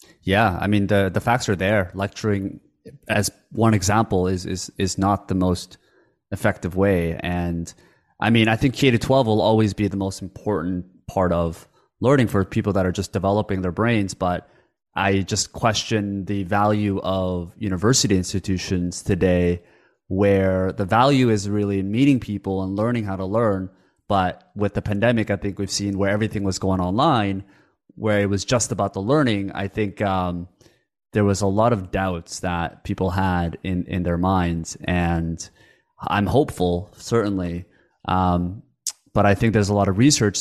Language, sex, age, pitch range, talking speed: English, male, 20-39, 90-105 Hz, 175 wpm